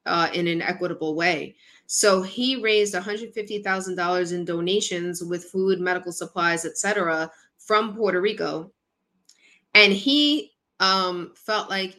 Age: 20-39